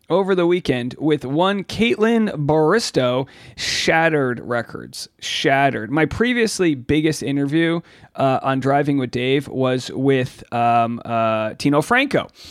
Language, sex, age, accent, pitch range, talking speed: English, male, 40-59, American, 130-170 Hz, 120 wpm